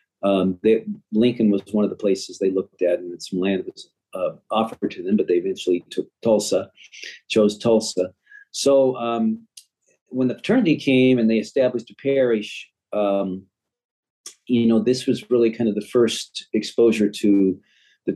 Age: 40-59